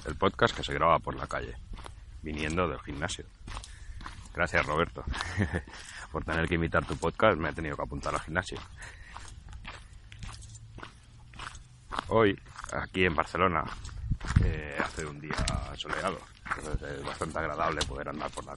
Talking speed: 140 wpm